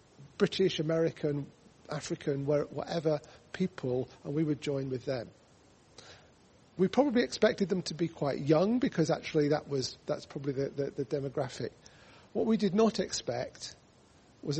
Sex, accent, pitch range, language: male, British, 140-185 Hz, English